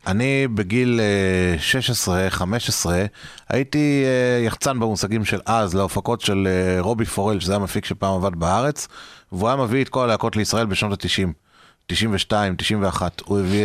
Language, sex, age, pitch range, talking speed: Hebrew, male, 30-49, 100-135 Hz, 130 wpm